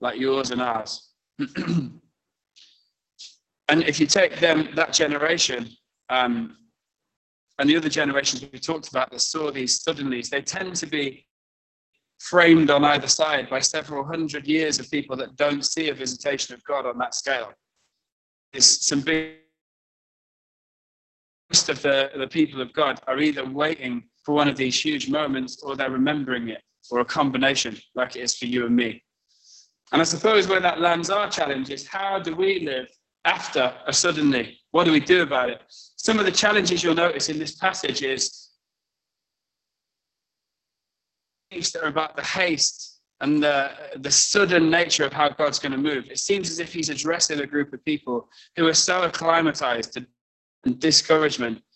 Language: English